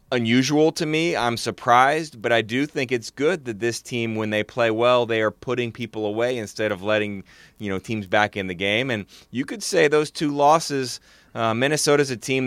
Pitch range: 95-120 Hz